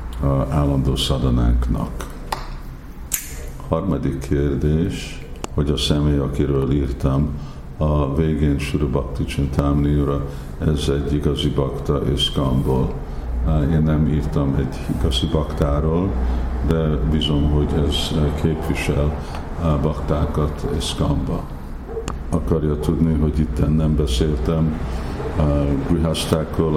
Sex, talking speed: male, 90 wpm